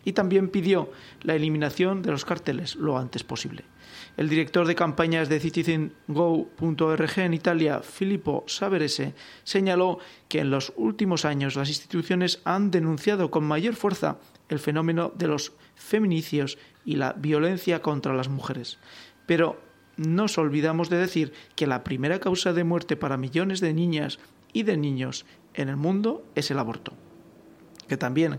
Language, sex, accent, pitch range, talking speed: Spanish, male, Spanish, 145-180 Hz, 150 wpm